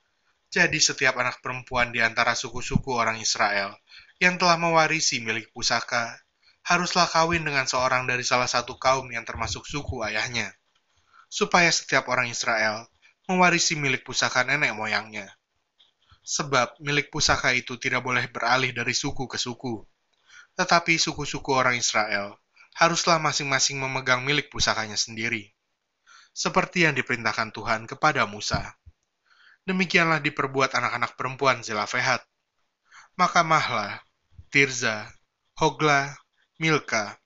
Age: 20-39